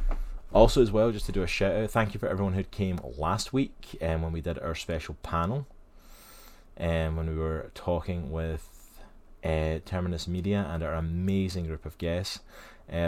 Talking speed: 195 wpm